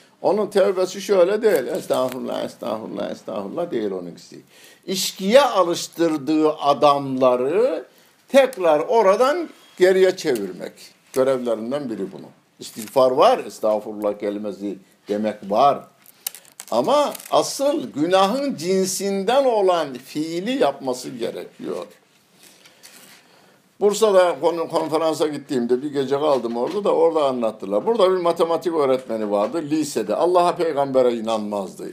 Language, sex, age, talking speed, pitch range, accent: Turkish, male, 60-79, 100 wpm, 125-190 Hz, native